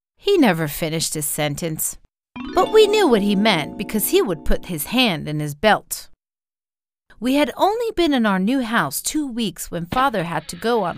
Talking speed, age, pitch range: 195 wpm, 40-59, 180-300 Hz